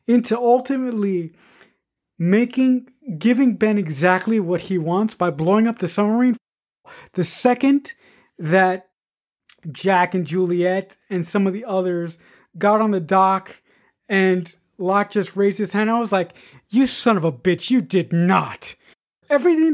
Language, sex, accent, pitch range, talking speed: English, male, American, 180-250 Hz, 145 wpm